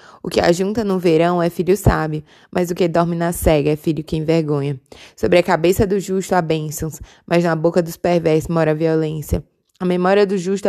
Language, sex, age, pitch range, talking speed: Portuguese, female, 20-39, 155-180 Hz, 210 wpm